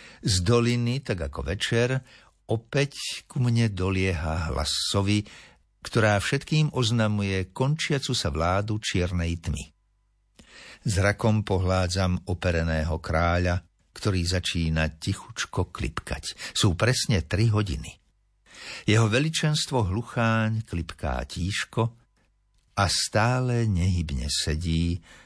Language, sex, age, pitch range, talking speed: Slovak, male, 60-79, 85-115 Hz, 95 wpm